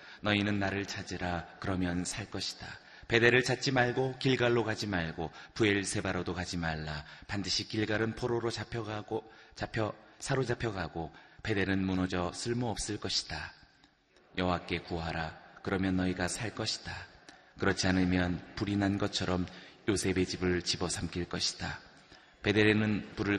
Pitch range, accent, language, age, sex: 90-110 Hz, native, Korean, 30-49, male